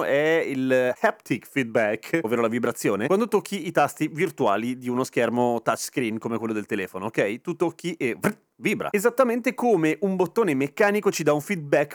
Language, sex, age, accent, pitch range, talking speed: Italian, male, 30-49, native, 150-215 Hz, 170 wpm